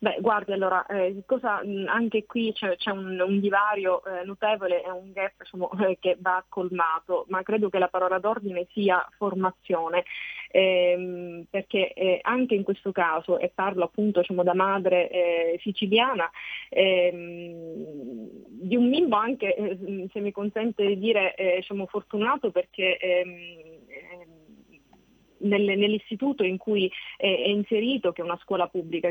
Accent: native